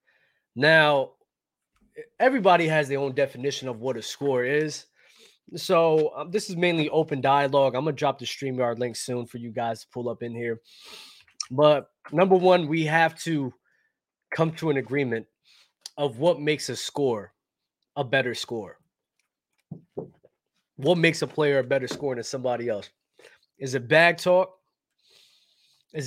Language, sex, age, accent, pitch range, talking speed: English, male, 20-39, American, 125-165 Hz, 155 wpm